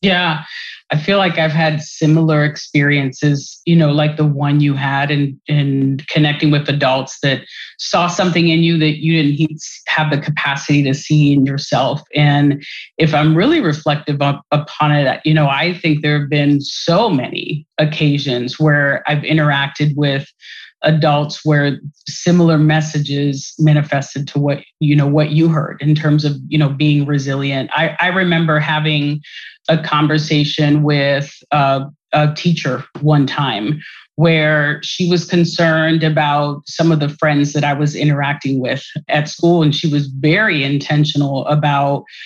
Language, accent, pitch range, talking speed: English, American, 145-160 Hz, 160 wpm